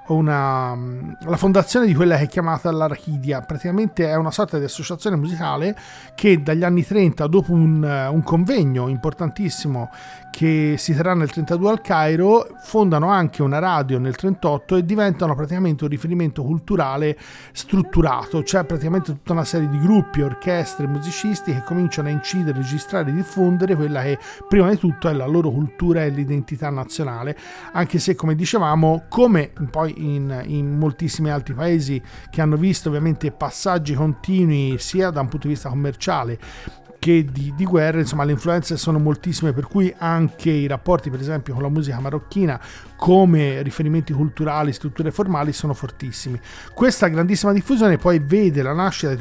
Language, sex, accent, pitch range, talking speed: Italian, male, native, 145-180 Hz, 160 wpm